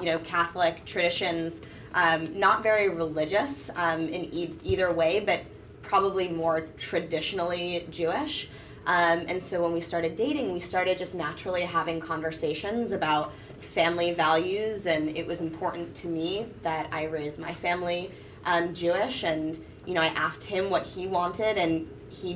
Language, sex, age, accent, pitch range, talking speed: English, female, 20-39, American, 165-185 Hz, 155 wpm